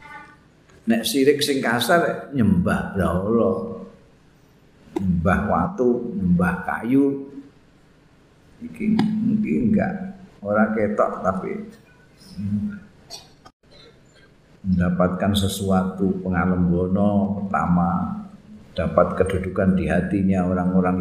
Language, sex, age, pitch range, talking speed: Indonesian, male, 50-69, 90-150 Hz, 70 wpm